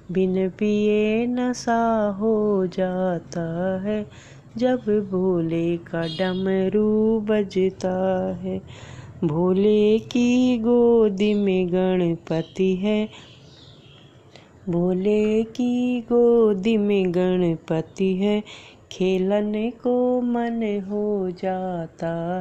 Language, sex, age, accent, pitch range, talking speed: Hindi, female, 30-49, native, 185-215 Hz, 80 wpm